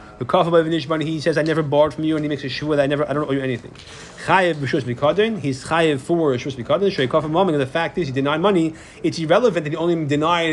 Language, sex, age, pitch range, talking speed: English, male, 30-49, 140-180 Hz, 215 wpm